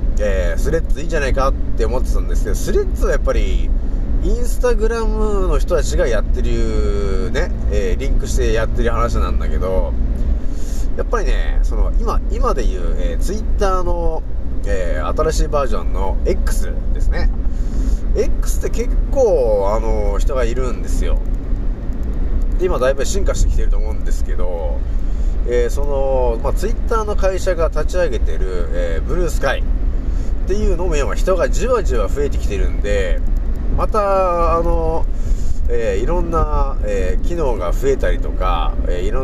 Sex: male